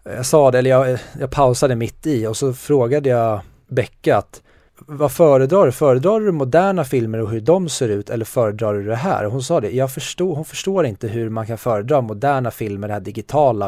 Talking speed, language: 210 wpm, Swedish